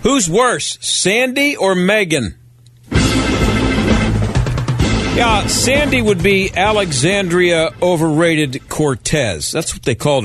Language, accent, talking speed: English, American, 95 wpm